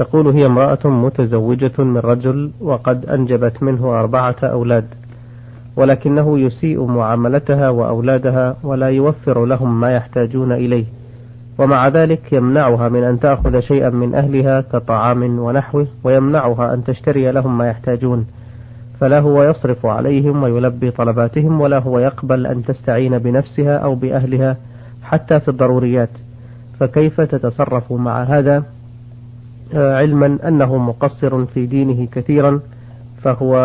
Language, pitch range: Arabic, 120-140 Hz